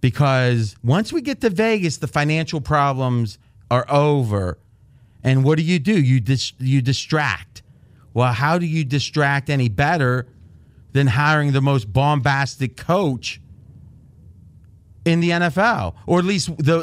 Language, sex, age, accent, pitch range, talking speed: English, male, 40-59, American, 125-165 Hz, 145 wpm